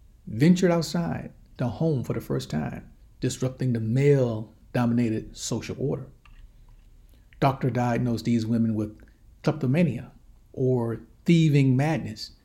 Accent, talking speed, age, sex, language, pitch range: American, 105 wpm, 60-79, male, English, 110-135 Hz